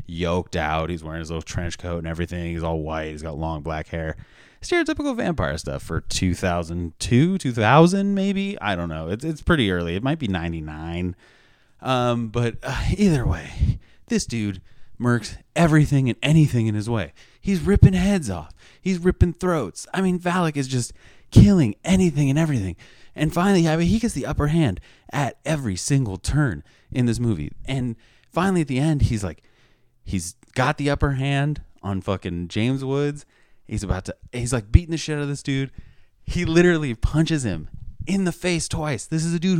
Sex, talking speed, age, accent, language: male, 185 wpm, 30-49, American, English